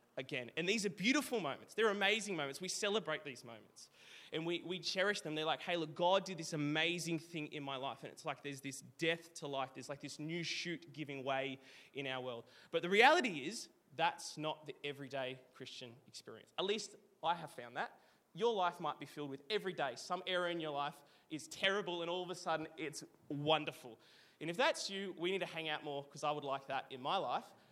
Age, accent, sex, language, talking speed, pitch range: 20-39, Australian, male, English, 225 wpm, 140-175 Hz